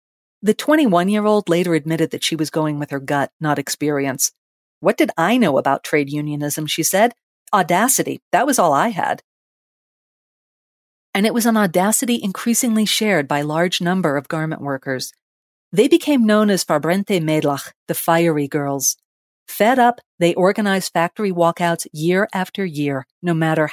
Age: 40-59